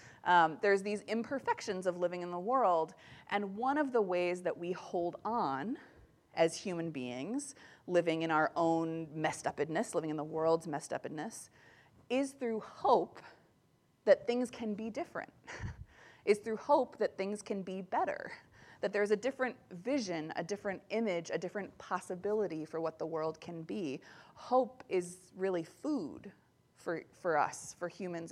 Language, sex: English, female